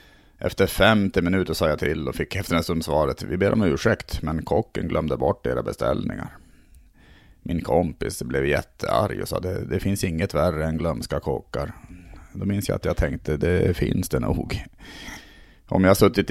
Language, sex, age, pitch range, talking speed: Swedish, male, 30-49, 80-105 Hz, 175 wpm